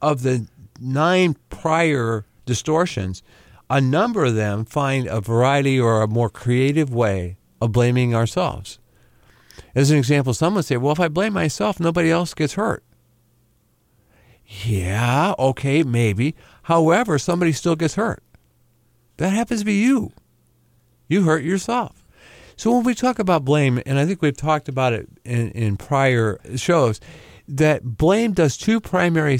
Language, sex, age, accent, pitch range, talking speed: English, male, 50-69, American, 115-165 Hz, 150 wpm